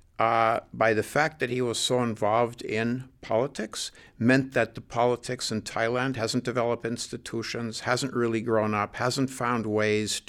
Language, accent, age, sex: English, American, 50-69, male